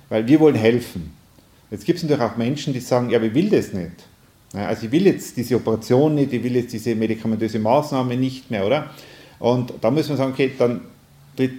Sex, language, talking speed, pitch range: male, German, 210 wpm, 105-130 Hz